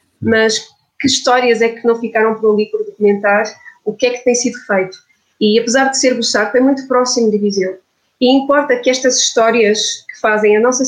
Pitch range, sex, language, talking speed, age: 215-255 Hz, female, Portuguese, 205 wpm, 20-39